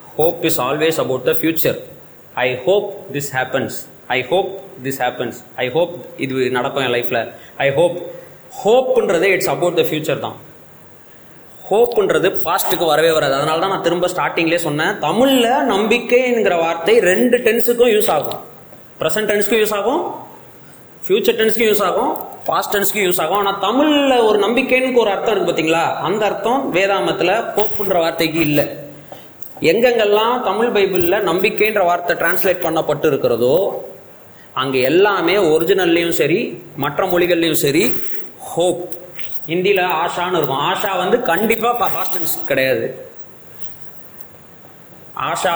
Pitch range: 165-240 Hz